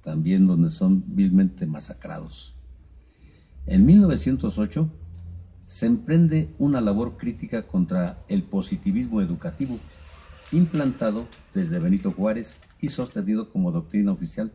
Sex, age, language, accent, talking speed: male, 50-69, Spanish, Mexican, 105 wpm